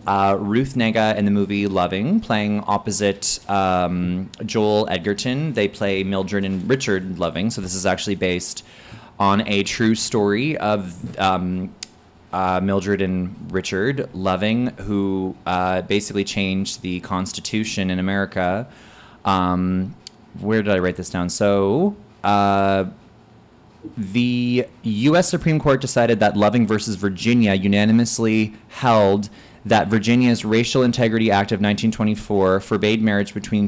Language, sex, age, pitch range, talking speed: English, male, 20-39, 100-115 Hz, 130 wpm